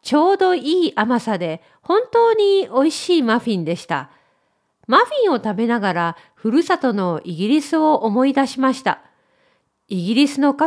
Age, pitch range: 40-59, 195-315 Hz